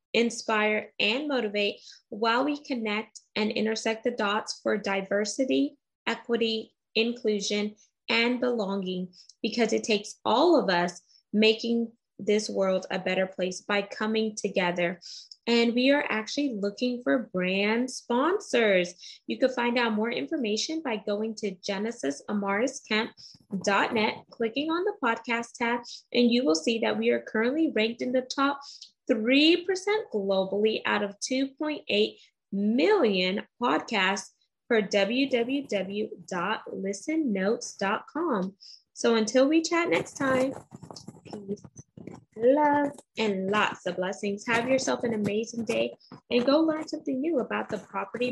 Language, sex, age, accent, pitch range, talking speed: English, female, 20-39, American, 205-255 Hz, 125 wpm